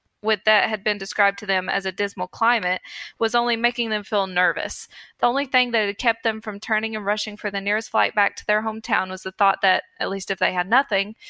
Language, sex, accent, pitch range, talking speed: English, female, American, 195-235 Hz, 245 wpm